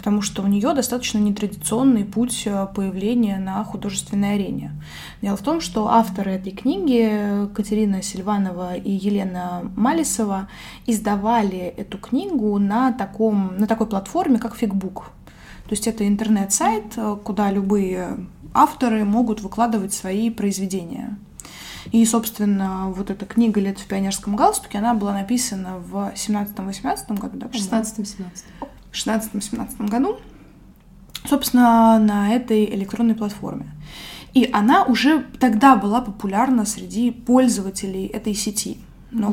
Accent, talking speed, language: native, 125 wpm, Russian